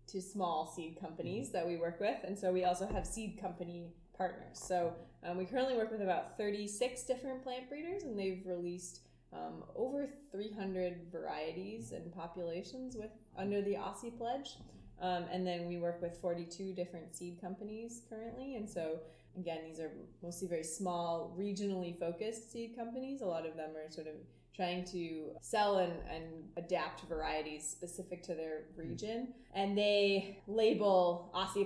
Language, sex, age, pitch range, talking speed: English, female, 20-39, 165-200 Hz, 165 wpm